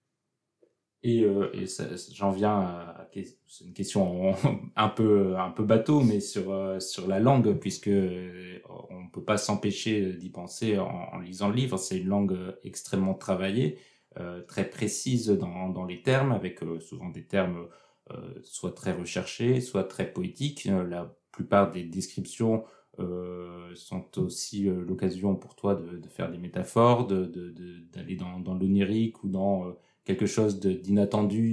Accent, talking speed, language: French, 150 wpm, French